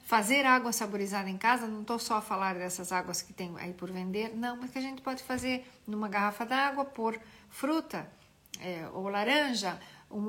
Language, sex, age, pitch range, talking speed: Portuguese, female, 50-69, 215-255 Hz, 190 wpm